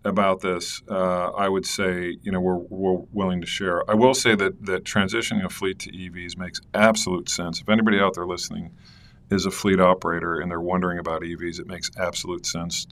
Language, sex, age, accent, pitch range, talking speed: English, male, 40-59, American, 85-100 Hz, 205 wpm